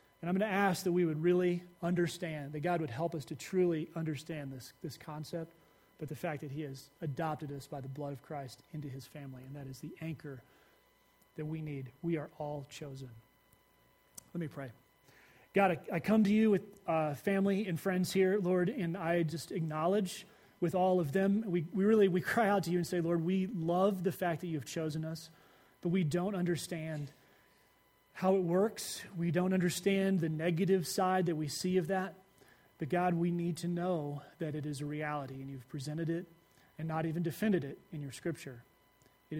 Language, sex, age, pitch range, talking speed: English, male, 30-49, 150-185 Hz, 205 wpm